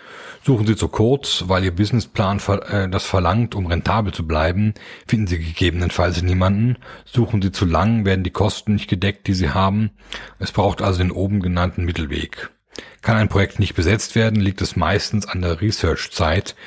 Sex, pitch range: male, 90-105 Hz